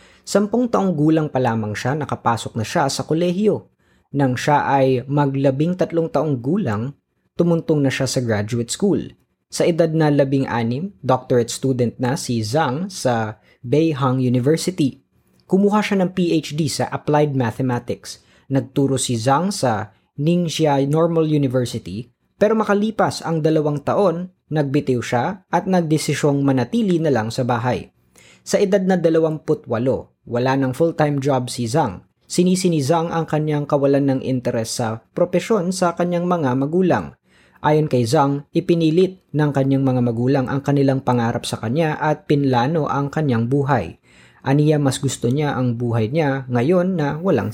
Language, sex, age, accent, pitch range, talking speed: Filipino, female, 20-39, native, 120-160 Hz, 150 wpm